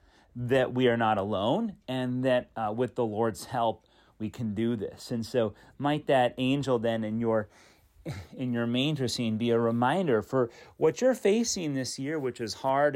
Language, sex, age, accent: English, male, 40-59, American